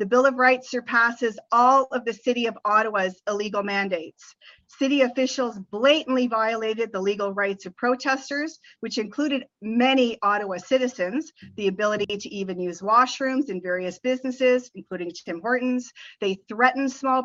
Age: 40-59